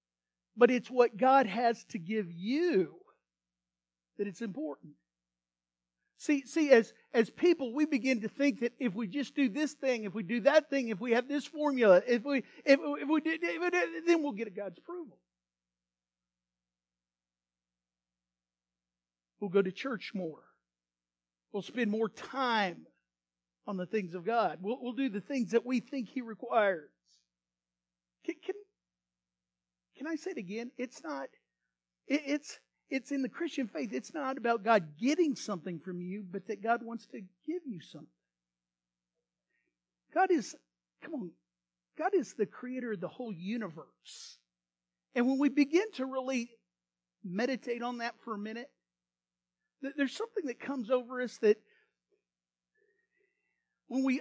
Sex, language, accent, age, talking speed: male, English, American, 50-69, 155 wpm